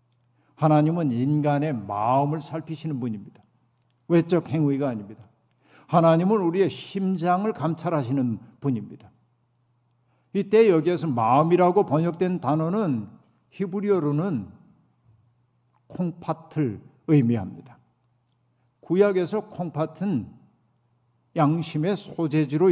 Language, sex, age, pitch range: Korean, male, 50-69, 125-170 Hz